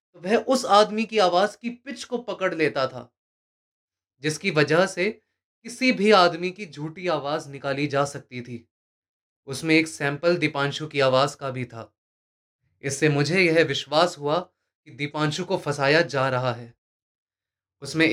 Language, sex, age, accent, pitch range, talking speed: Hindi, male, 20-39, native, 125-180 Hz, 155 wpm